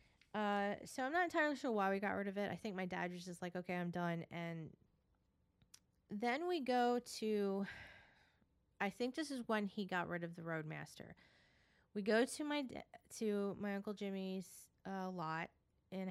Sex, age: female, 20-39